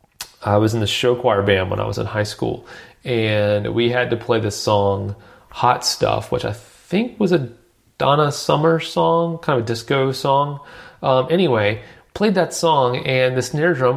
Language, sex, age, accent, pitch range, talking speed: English, male, 30-49, American, 110-140 Hz, 190 wpm